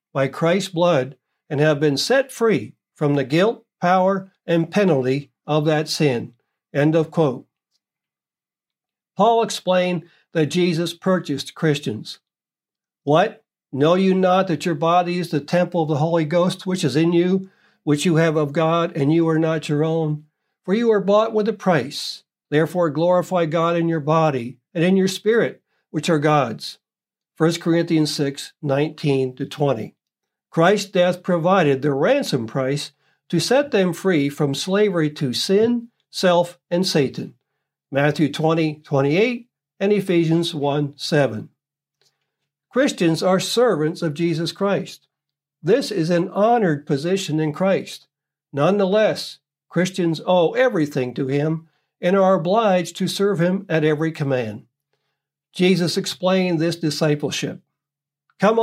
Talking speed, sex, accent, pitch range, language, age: 140 wpm, male, American, 150-185 Hz, English, 60-79